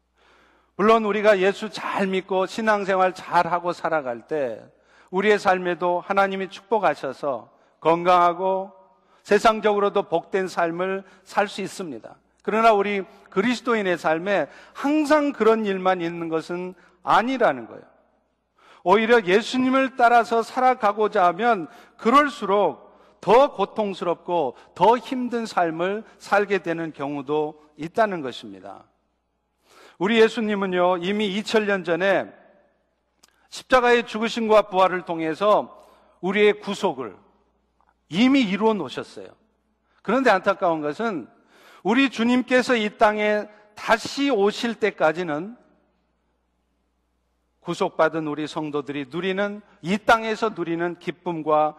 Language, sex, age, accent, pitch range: Korean, male, 50-69, native, 175-220 Hz